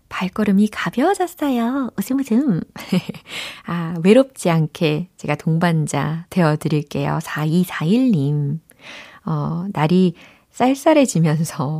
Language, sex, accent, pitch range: Korean, female, native, 160-225 Hz